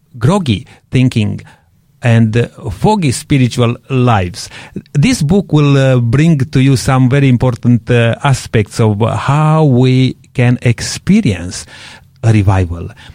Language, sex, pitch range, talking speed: English, male, 105-135 Hz, 120 wpm